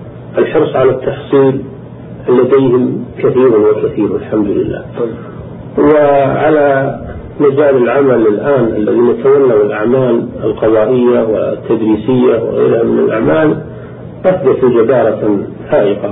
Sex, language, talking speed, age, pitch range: male, Arabic, 85 wpm, 50-69, 115-150 Hz